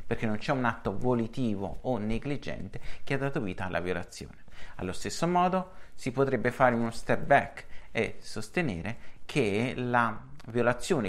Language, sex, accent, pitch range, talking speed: Italian, male, native, 110-145 Hz, 150 wpm